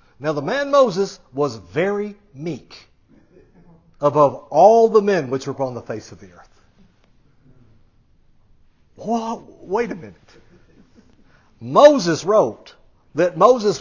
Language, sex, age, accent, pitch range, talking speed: English, male, 60-79, American, 115-170 Hz, 115 wpm